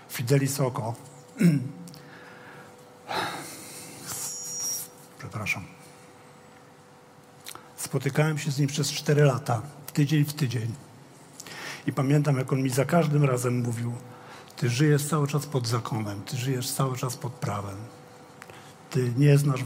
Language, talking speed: Polish, 115 wpm